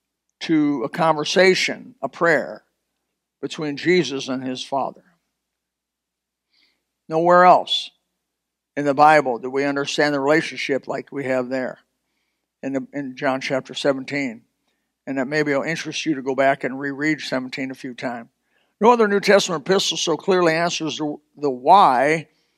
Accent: American